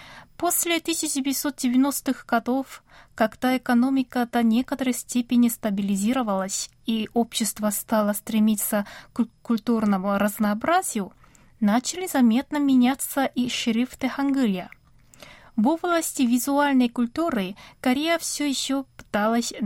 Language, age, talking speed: Russian, 20-39, 90 wpm